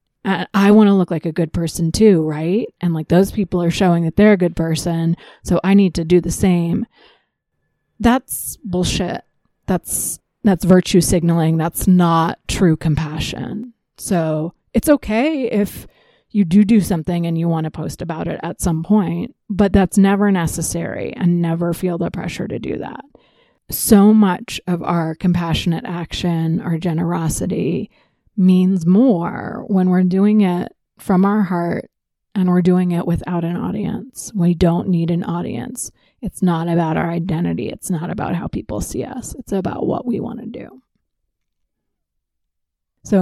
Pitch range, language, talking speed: 170-200 Hz, English, 165 wpm